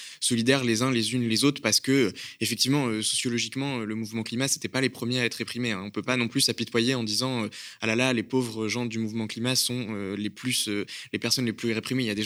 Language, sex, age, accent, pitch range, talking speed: French, male, 20-39, French, 110-130 Hz, 270 wpm